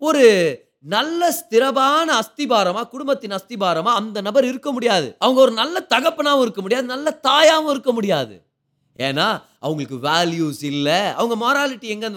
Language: Tamil